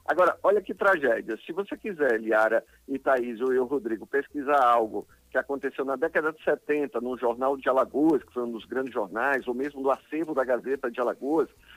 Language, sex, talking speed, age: Portuguese, male, 195 wpm, 50-69